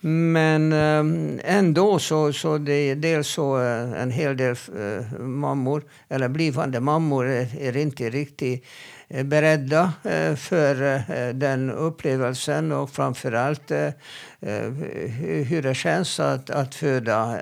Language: Swedish